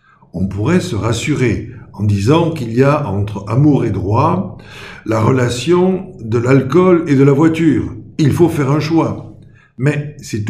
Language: French